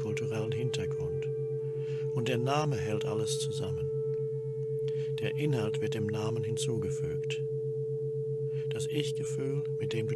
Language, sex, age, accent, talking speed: Russian, male, 60-79, German, 110 wpm